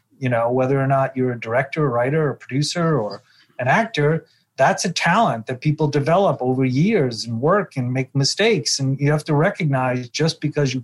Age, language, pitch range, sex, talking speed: 30-49, English, 125-155 Hz, male, 200 wpm